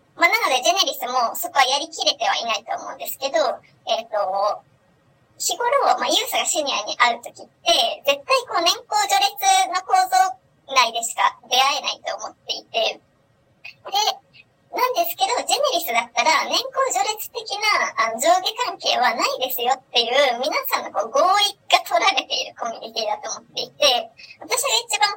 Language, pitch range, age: Japanese, 260-375 Hz, 20-39